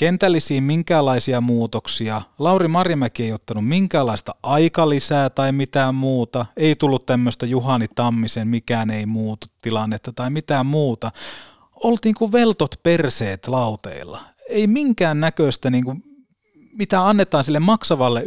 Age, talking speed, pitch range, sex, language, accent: 30-49, 120 wpm, 120-170 Hz, male, Finnish, native